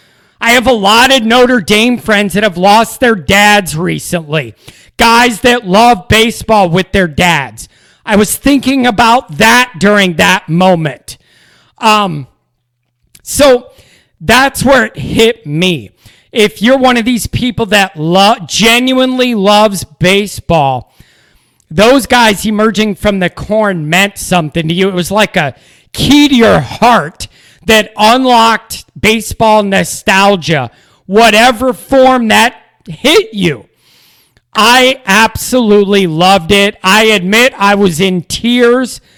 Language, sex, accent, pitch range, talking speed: English, male, American, 180-230 Hz, 130 wpm